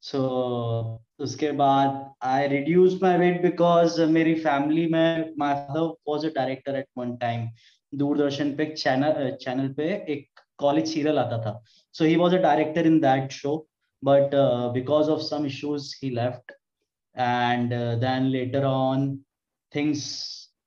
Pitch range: 130-150 Hz